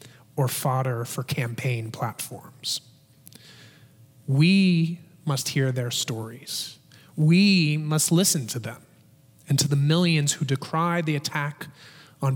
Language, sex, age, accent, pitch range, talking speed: English, male, 30-49, American, 135-185 Hz, 115 wpm